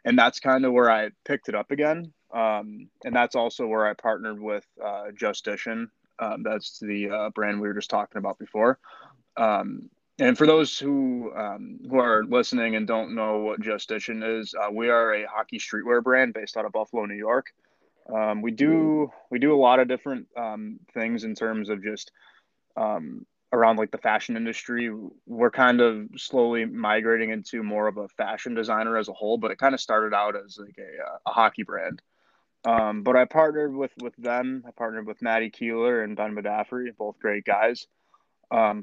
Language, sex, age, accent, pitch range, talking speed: English, male, 20-39, American, 105-125 Hz, 195 wpm